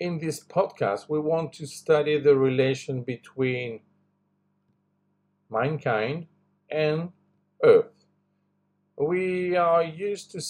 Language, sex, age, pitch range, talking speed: English, male, 50-69, 145-185 Hz, 95 wpm